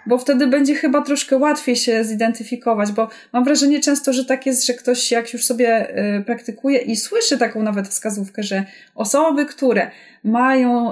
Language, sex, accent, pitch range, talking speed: Polish, female, native, 210-260 Hz, 165 wpm